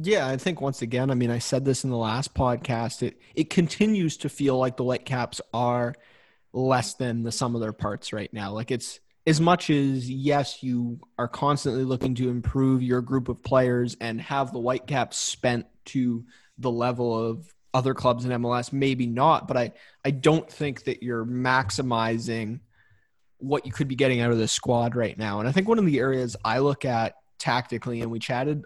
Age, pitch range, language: 20-39, 120-140 Hz, English